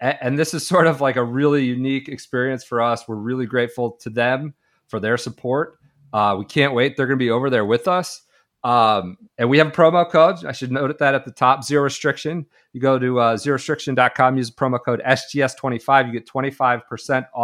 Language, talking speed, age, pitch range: English, 205 wpm, 40-59, 120-150 Hz